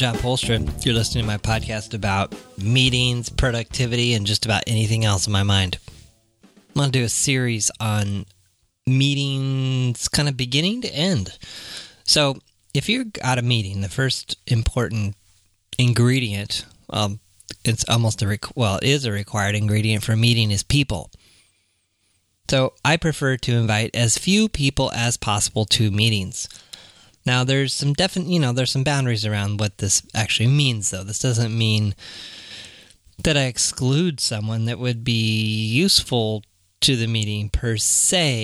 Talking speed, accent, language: 155 wpm, American, English